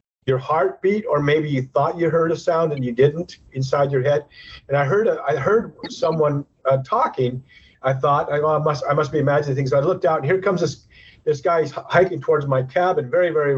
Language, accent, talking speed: English, American, 215 wpm